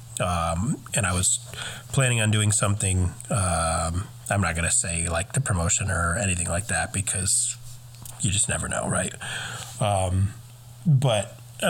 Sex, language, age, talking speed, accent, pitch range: male, English, 30-49, 155 wpm, American, 95-120 Hz